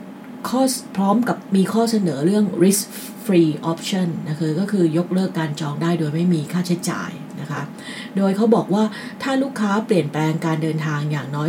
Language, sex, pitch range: English, female, 170-215 Hz